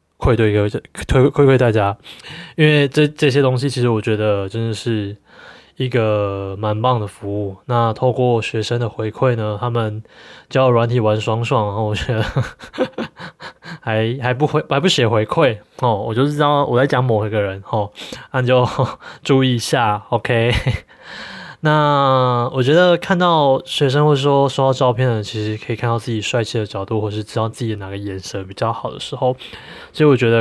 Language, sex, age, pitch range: Chinese, male, 20-39, 110-130 Hz